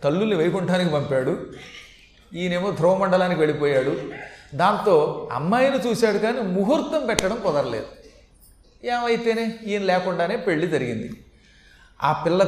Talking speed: 100 wpm